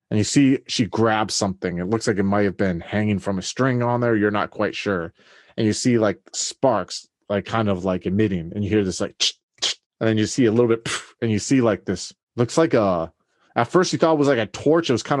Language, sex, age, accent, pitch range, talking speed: English, male, 30-49, American, 100-120 Hz, 270 wpm